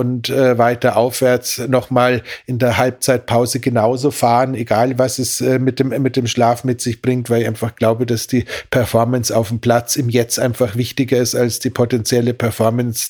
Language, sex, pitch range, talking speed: German, male, 115-130 Hz, 185 wpm